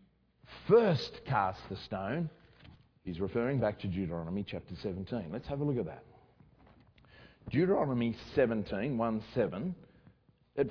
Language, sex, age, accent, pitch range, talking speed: English, male, 50-69, Australian, 120-185 Hz, 125 wpm